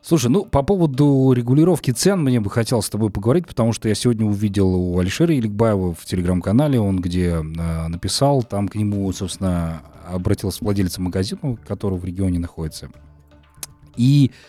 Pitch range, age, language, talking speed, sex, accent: 95-120 Hz, 30-49, Russian, 155 wpm, male, native